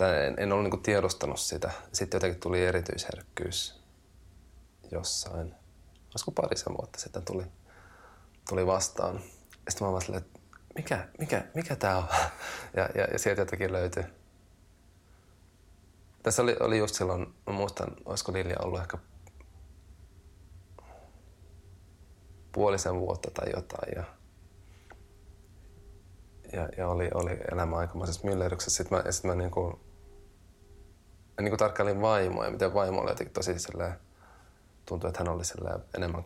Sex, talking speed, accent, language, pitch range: male, 120 wpm, native, Finnish, 85-95 Hz